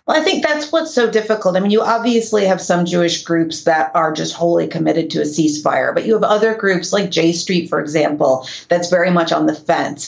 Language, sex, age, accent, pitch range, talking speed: English, female, 30-49, American, 160-190 Hz, 230 wpm